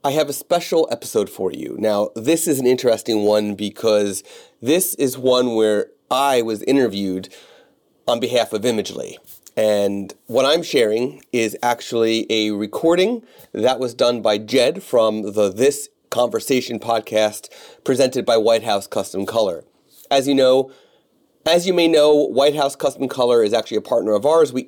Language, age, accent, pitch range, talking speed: English, 30-49, American, 110-135 Hz, 165 wpm